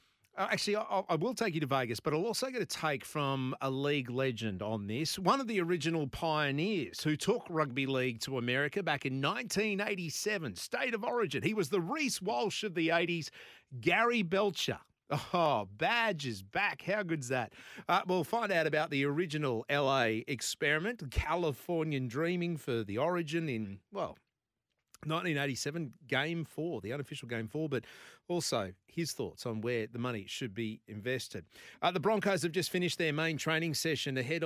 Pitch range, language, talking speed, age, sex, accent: 130-170 Hz, English, 170 wpm, 40-59, male, Australian